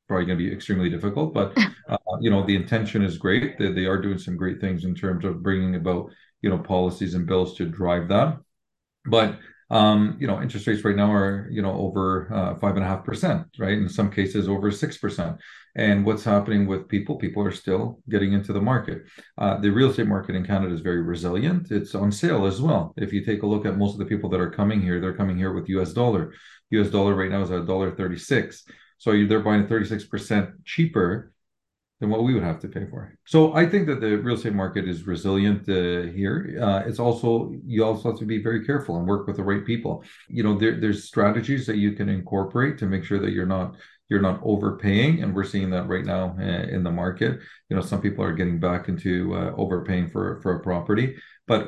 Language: English